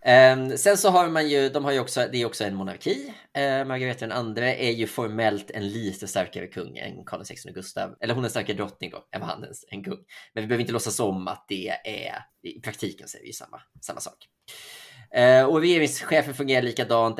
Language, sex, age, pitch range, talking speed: Swedish, male, 20-39, 100-140 Hz, 215 wpm